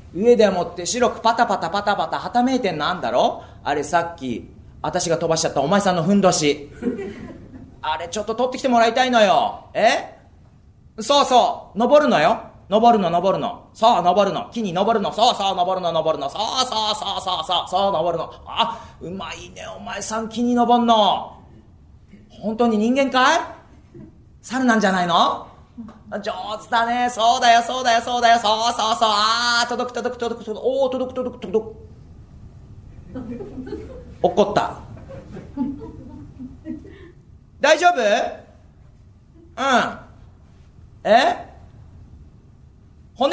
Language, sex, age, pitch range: Japanese, male, 30-49, 185-245 Hz